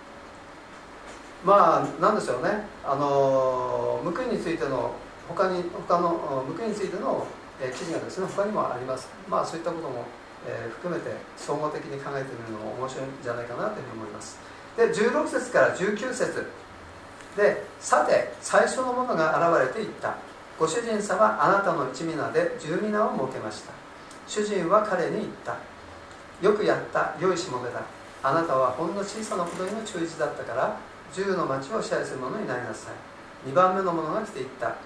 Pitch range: 130-195 Hz